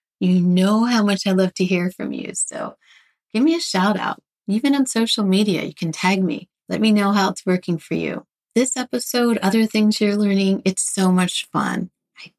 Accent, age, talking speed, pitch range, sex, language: American, 30-49, 210 wpm, 175-220 Hz, female, English